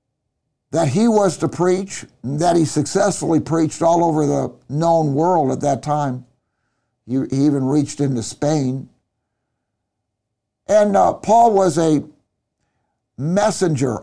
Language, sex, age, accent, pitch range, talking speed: English, male, 60-79, American, 150-185 Hz, 125 wpm